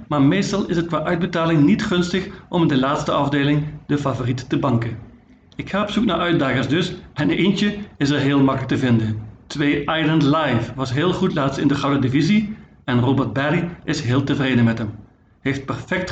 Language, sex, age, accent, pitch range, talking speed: Dutch, male, 50-69, Dutch, 130-180 Hz, 200 wpm